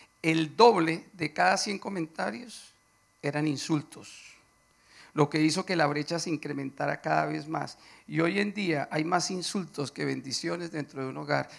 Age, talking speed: 50-69, 165 wpm